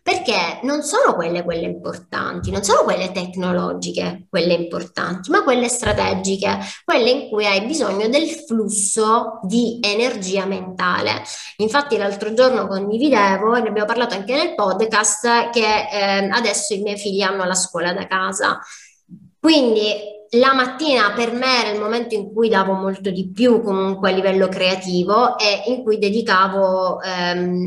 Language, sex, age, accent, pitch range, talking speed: Italian, female, 20-39, native, 190-235 Hz, 150 wpm